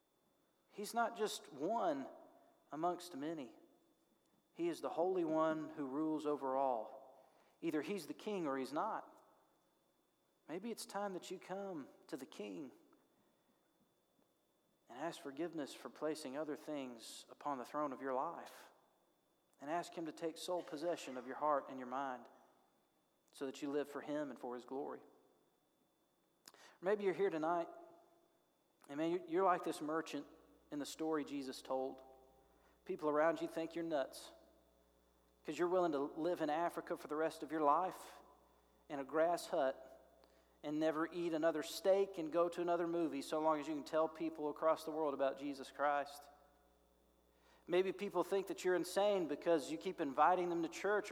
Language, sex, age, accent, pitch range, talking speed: English, male, 40-59, American, 140-180 Hz, 165 wpm